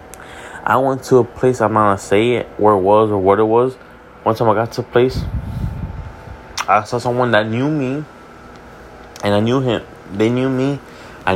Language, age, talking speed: English, 20-39, 195 wpm